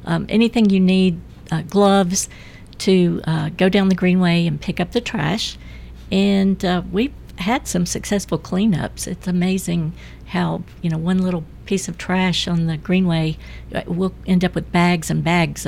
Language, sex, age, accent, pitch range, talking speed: English, female, 60-79, American, 160-185 Hz, 170 wpm